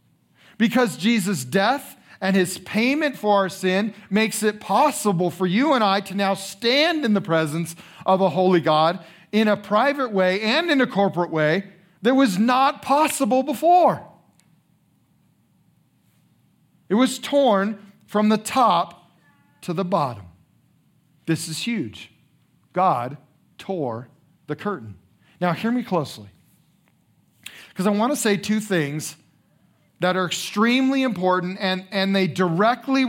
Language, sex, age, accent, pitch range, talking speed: English, male, 40-59, American, 145-205 Hz, 135 wpm